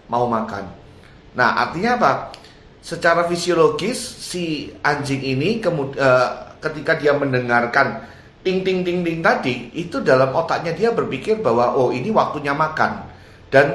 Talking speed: 135 wpm